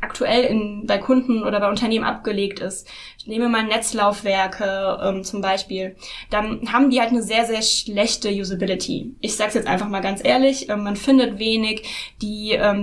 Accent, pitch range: German, 210-250 Hz